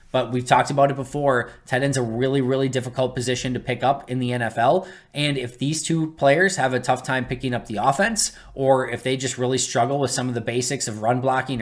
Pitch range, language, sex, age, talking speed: 125-160 Hz, English, male, 20-39, 240 wpm